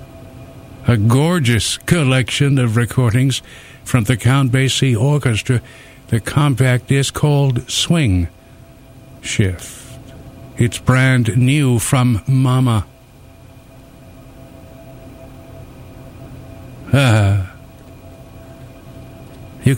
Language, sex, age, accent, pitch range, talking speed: English, male, 60-79, American, 115-130 Hz, 70 wpm